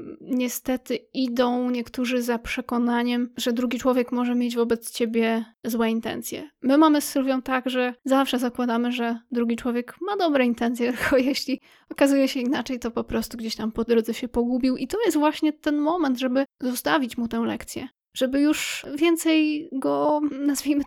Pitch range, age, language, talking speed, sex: 235-275 Hz, 20-39, Polish, 165 wpm, female